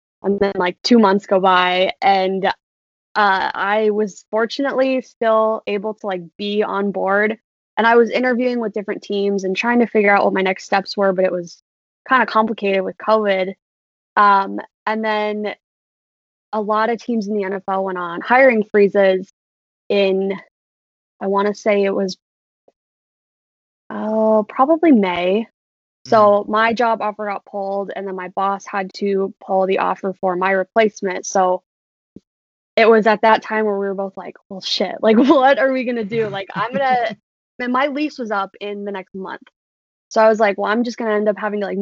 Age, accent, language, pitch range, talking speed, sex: 20-39, American, English, 195-230 Hz, 190 wpm, female